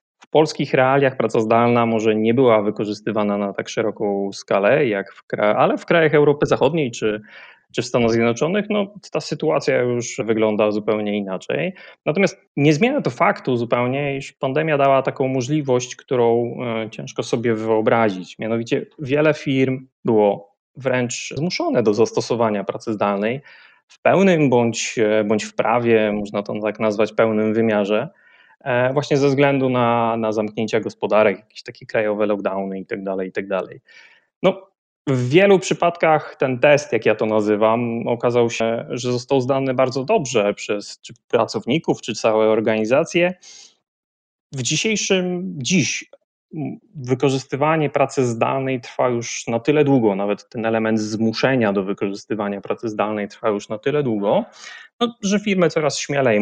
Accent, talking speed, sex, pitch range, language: native, 145 wpm, male, 110-150 Hz, Polish